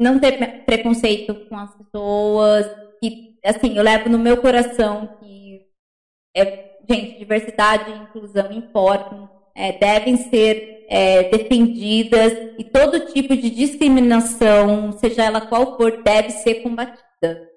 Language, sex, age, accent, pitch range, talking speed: Portuguese, female, 20-39, Brazilian, 215-255 Hz, 115 wpm